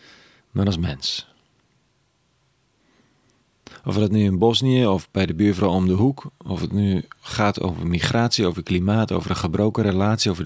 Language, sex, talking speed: Dutch, male, 160 wpm